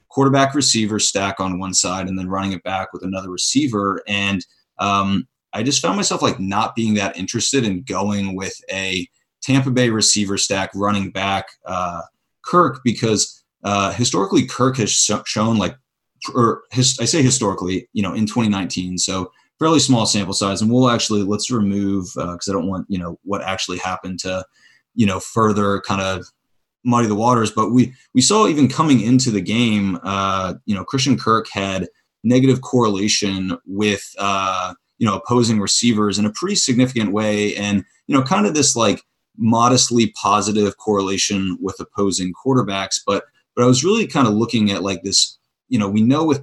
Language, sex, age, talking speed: English, male, 30-49, 180 wpm